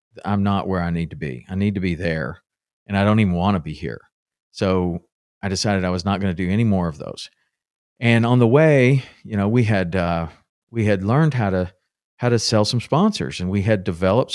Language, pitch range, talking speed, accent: English, 95-120 Hz, 235 wpm, American